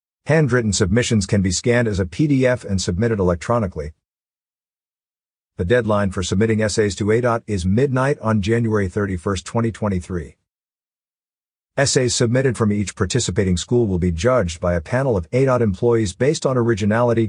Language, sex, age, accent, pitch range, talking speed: English, male, 50-69, American, 95-125 Hz, 145 wpm